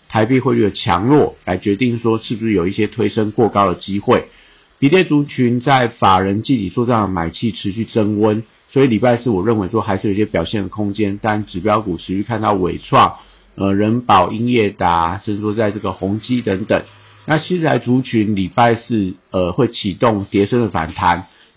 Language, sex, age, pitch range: Chinese, male, 50-69, 100-120 Hz